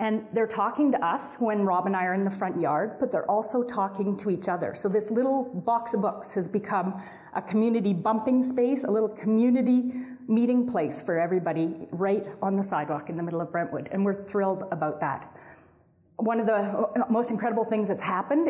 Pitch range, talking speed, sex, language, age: 195-240 Hz, 200 wpm, female, English, 30-49